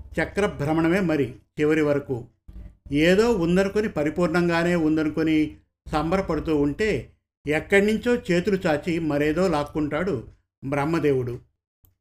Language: Telugu